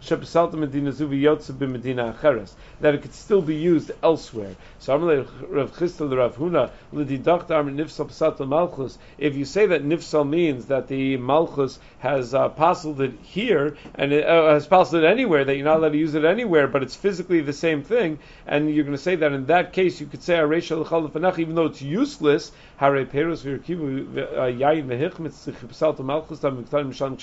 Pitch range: 140-170 Hz